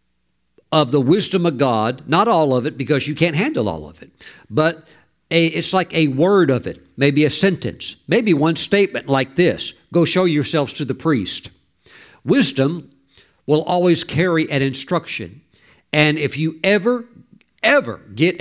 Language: English